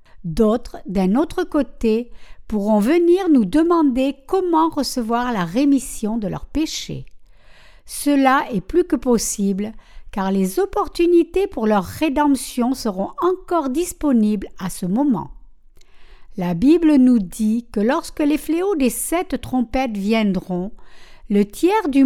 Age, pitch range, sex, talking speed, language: 60-79, 215-300 Hz, female, 130 wpm, French